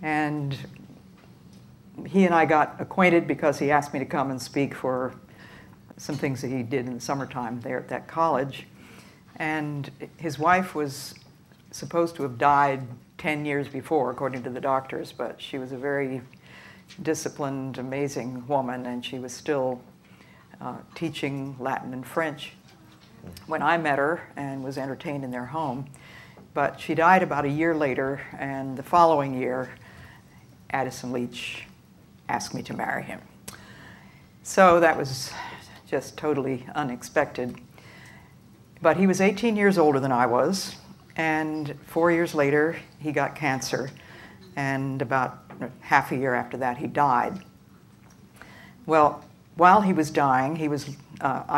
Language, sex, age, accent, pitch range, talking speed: English, female, 60-79, American, 130-155 Hz, 145 wpm